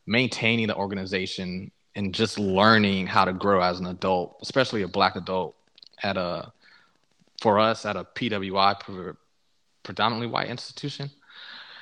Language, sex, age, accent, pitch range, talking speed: English, male, 20-39, American, 95-120 Hz, 130 wpm